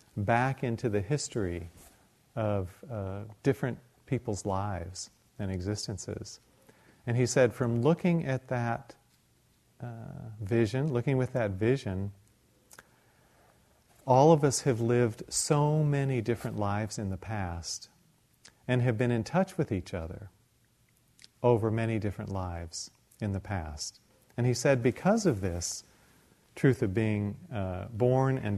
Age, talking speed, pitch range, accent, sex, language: 40-59, 130 wpm, 100-130 Hz, American, male, English